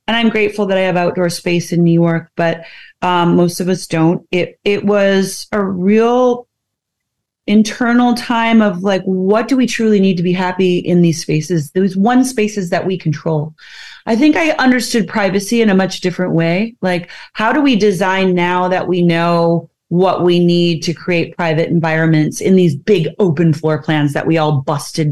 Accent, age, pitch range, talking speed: American, 30-49, 170-210 Hz, 190 wpm